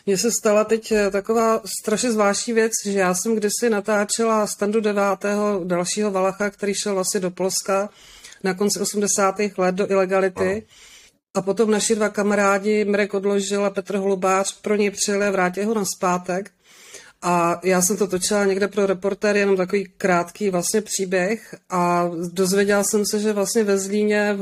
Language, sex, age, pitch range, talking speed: Czech, female, 40-59, 190-210 Hz, 165 wpm